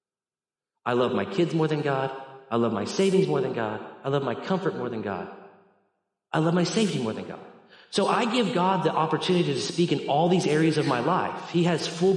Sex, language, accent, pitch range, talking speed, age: male, English, American, 135-190 Hz, 225 wpm, 40-59